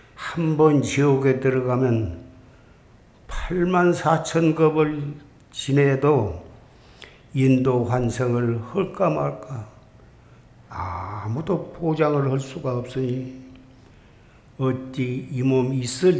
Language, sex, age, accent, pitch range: Korean, male, 60-79, native, 120-140 Hz